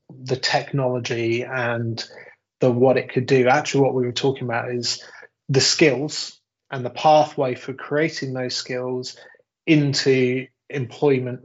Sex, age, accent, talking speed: male, 20-39, British, 135 wpm